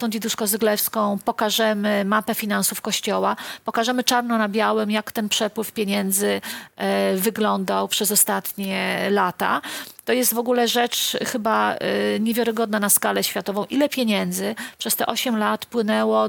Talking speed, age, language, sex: 130 wpm, 40-59, Polish, female